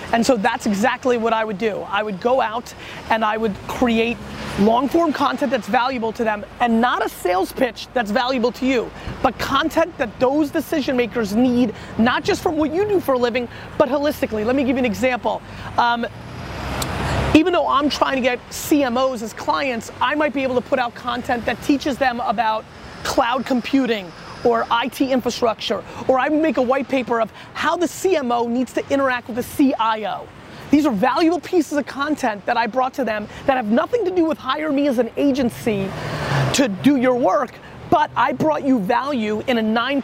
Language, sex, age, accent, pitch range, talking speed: English, female, 30-49, American, 230-280 Hz, 200 wpm